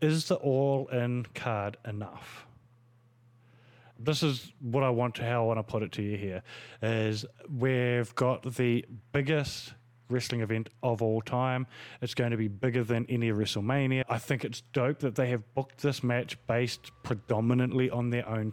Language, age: English, 30-49